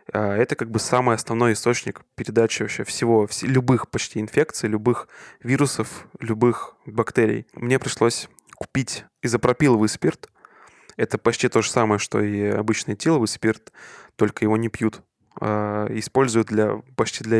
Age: 20-39